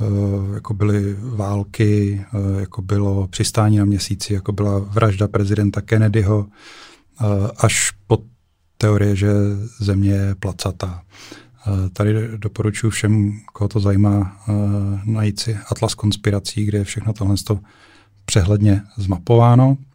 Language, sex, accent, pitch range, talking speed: Czech, male, native, 105-115 Hz, 125 wpm